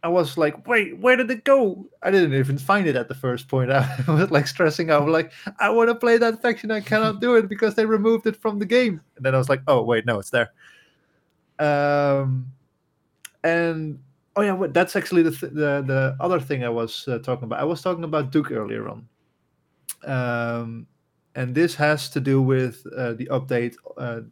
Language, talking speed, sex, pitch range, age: English, 210 wpm, male, 120-160 Hz, 20-39